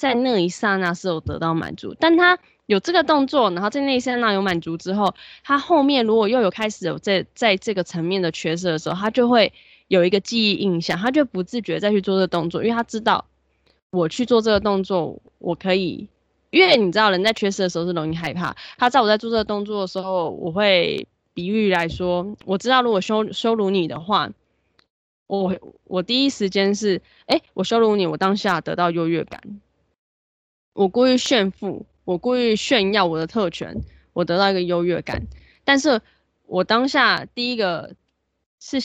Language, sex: Chinese, female